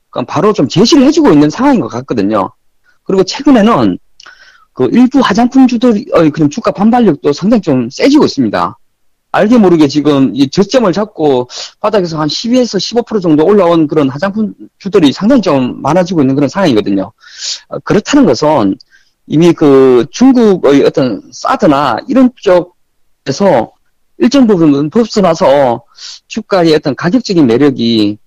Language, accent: Korean, native